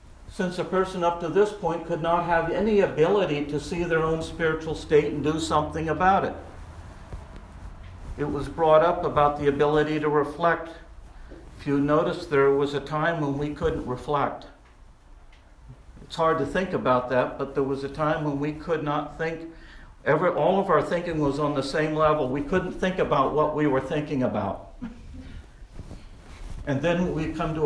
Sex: male